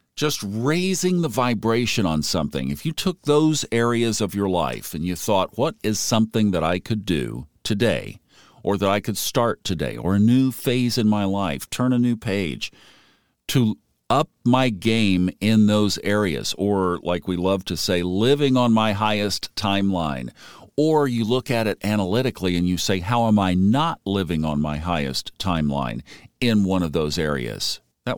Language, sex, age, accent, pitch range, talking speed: English, male, 50-69, American, 90-120 Hz, 180 wpm